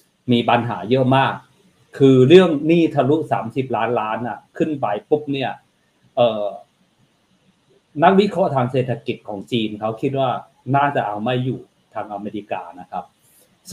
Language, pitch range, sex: Thai, 115-150 Hz, male